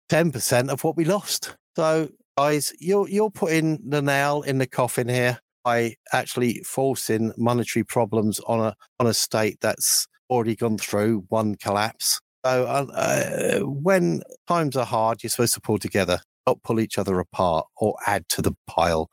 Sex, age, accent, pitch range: male, 50-69, British, 105-125 Hz